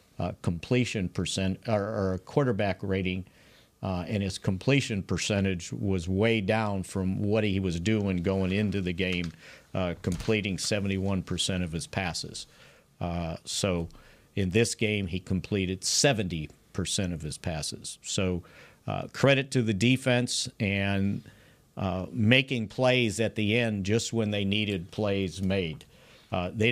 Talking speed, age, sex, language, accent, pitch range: 145 wpm, 50-69, male, English, American, 95-120 Hz